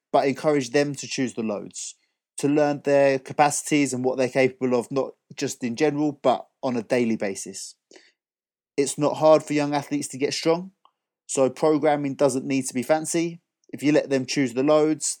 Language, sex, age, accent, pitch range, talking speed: English, male, 30-49, British, 125-150 Hz, 190 wpm